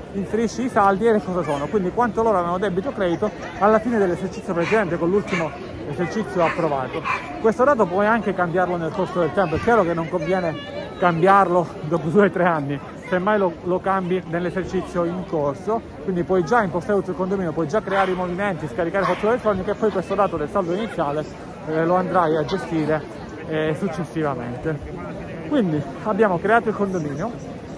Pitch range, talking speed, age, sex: 170-200 Hz, 175 wpm, 30-49, male